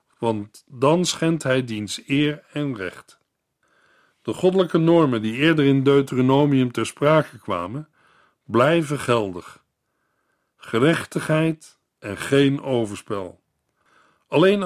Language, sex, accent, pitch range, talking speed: Dutch, male, Dutch, 125-175 Hz, 100 wpm